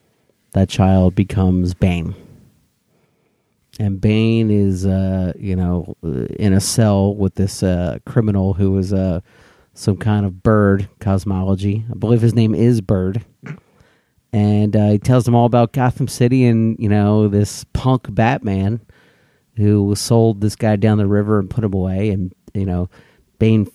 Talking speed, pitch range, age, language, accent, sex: 155 wpm, 95-110 Hz, 40-59, English, American, male